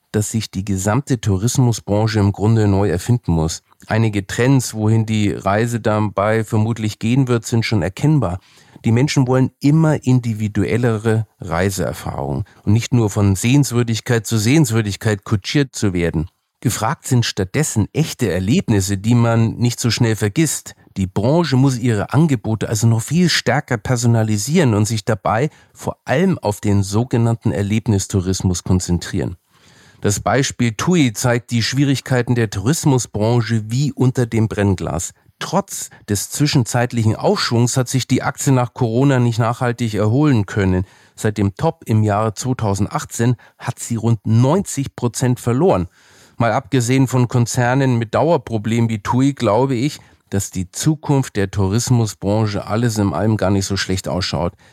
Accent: German